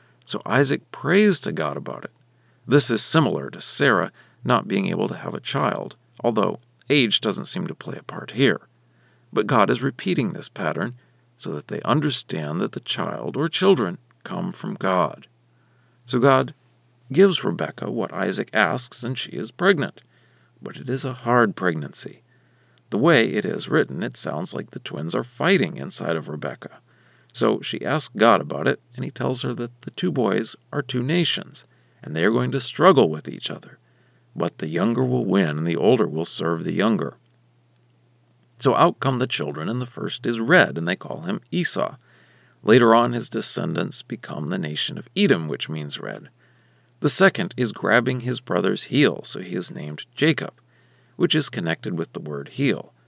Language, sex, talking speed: English, male, 185 wpm